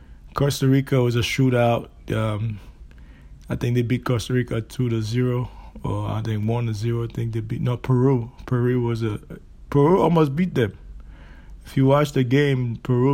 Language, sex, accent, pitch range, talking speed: English, male, American, 115-130 Hz, 185 wpm